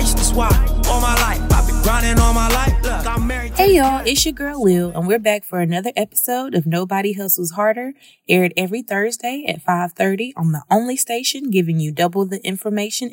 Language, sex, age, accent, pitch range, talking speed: English, female, 20-39, American, 165-210 Hz, 135 wpm